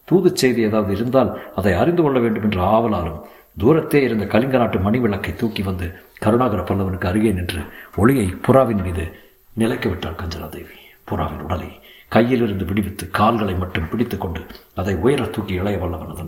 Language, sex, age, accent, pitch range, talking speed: Tamil, male, 60-79, native, 100-130 Hz, 145 wpm